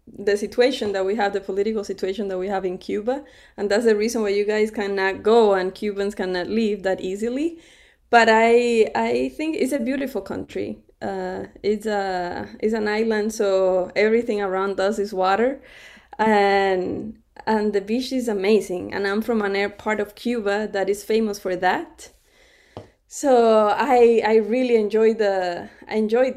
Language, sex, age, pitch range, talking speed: English, female, 20-39, 205-250 Hz, 170 wpm